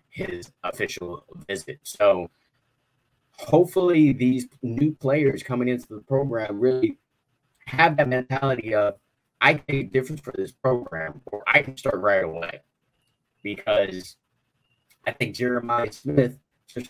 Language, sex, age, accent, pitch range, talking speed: English, male, 30-49, American, 105-140 Hz, 130 wpm